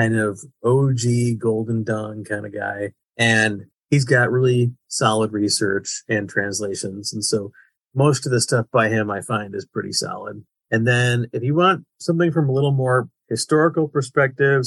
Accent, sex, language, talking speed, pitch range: American, male, English, 170 wpm, 105-125 Hz